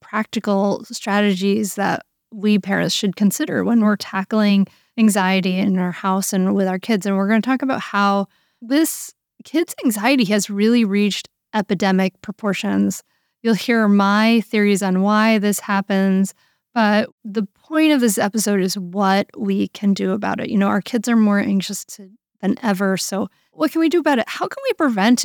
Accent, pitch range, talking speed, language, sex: American, 190-225 Hz, 175 wpm, English, female